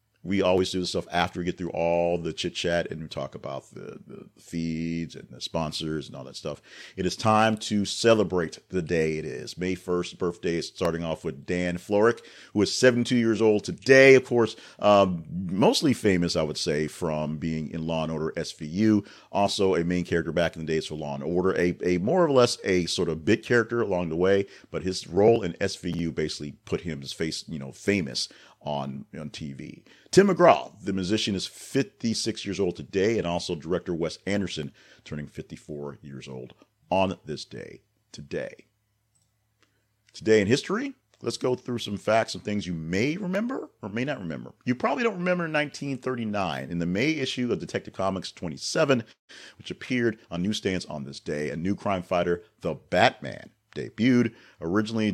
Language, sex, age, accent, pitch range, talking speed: English, male, 40-59, American, 80-110 Hz, 190 wpm